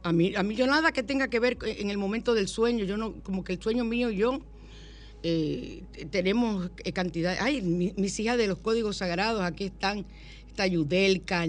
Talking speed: 200 wpm